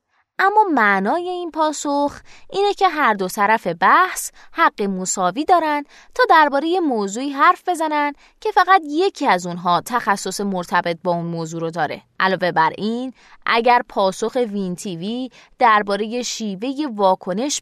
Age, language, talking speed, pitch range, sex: 20-39, Persian, 145 wpm, 185-290 Hz, female